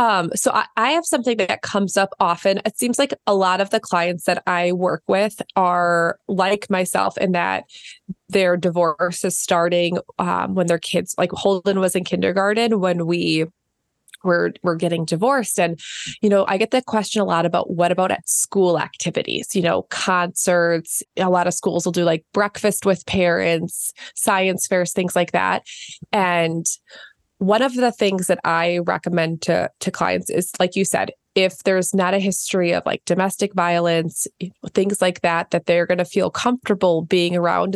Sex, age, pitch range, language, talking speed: female, 20-39, 175-200 Hz, English, 180 wpm